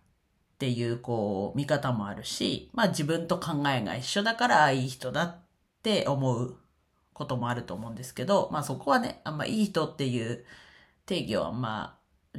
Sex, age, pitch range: female, 40-59, 125-170 Hz